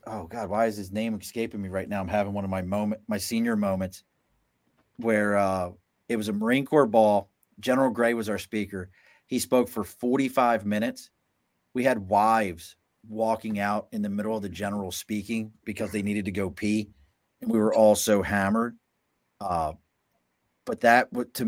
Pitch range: 100-115 Hz